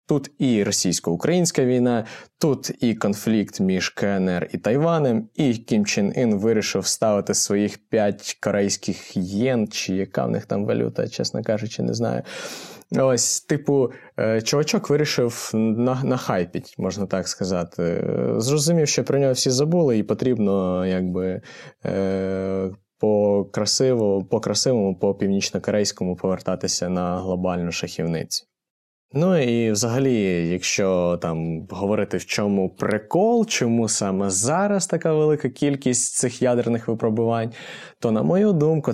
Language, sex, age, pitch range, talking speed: Ukrainian, male, 20-39, 95-125 Hz, 120 wpm